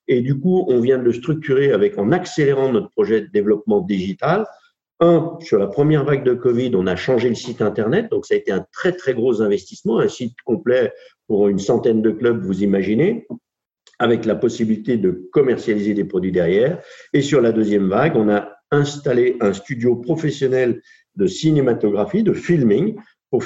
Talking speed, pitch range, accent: 185 wpm, 115-170 Hz, French